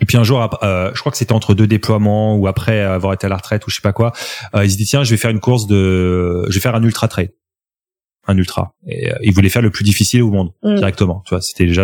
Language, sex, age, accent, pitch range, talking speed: French, male, 30-49, French, 95-120 Hz, 280 wpm